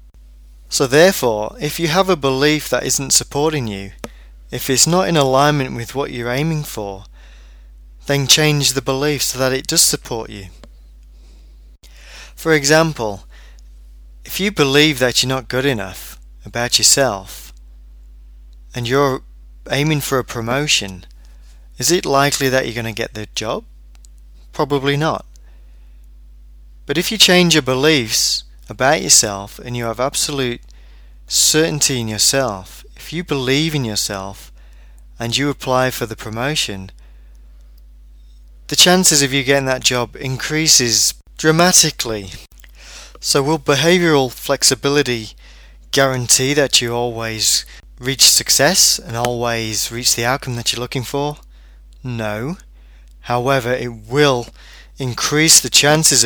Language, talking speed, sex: English, 130 wpm, male